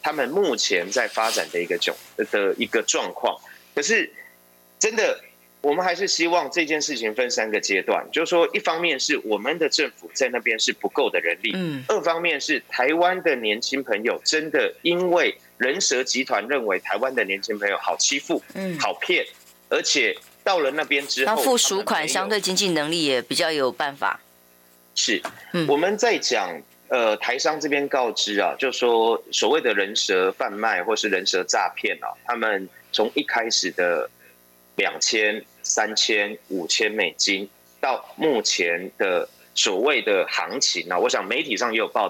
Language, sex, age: Chinese, male, 30-49